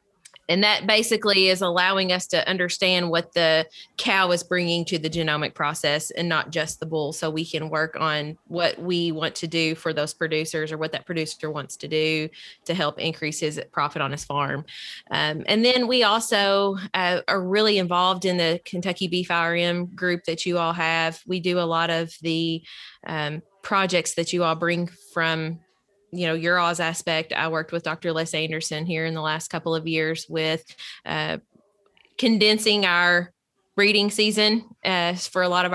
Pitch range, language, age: 160-185 Hz, English, 20-39